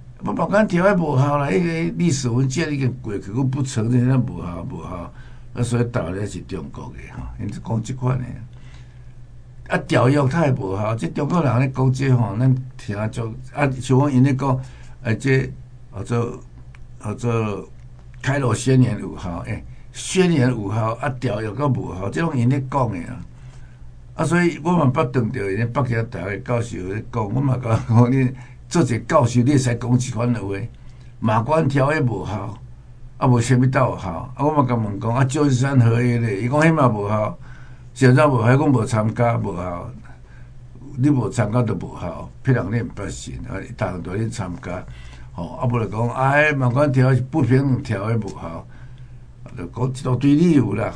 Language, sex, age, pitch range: Chinese, male, 60-79, 115-130 Hz